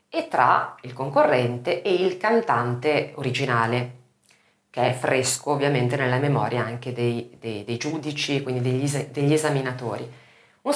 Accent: native